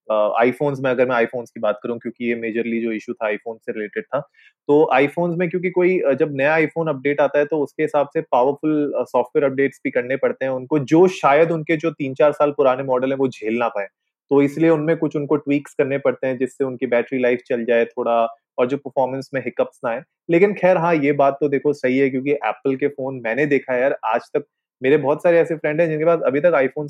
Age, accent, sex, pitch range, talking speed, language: 20-39, native, male, 120-150 Hz, 230 wpm, Hindi